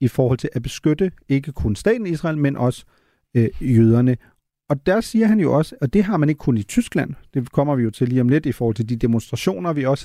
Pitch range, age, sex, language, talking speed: 125-165 Hz, 40-59, male, Danish, 245 wpm